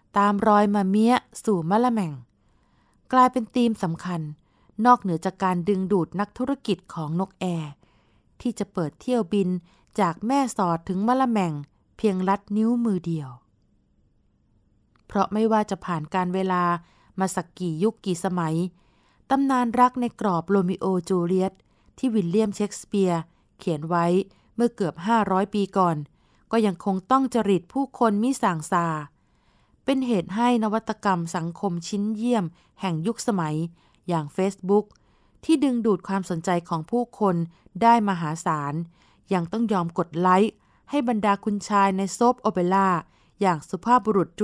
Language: Thai